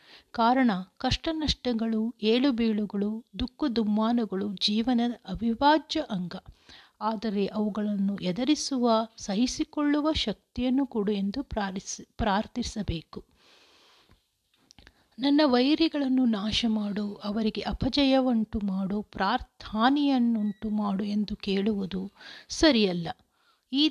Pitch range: 200-255 Hz